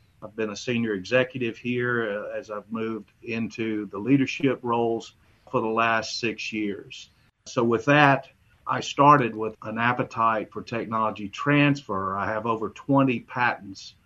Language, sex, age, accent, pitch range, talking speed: English, male, 50-69, American, 105-125 Hz, 145 wpm